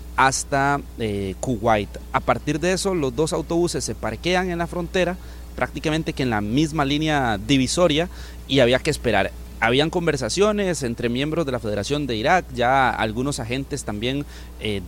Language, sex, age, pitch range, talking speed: Spanish, male, 30-49, 115-155 Hz, 160 wpm